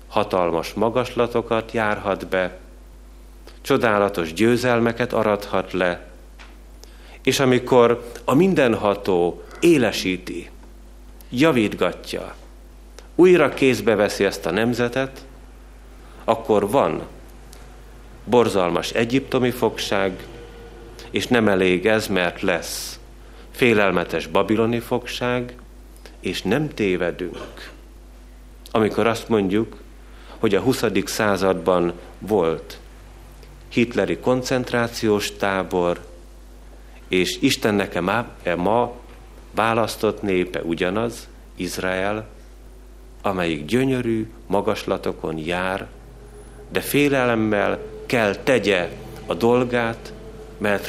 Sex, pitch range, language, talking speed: male, 90-120 Hz, Hungarian, 80 wpm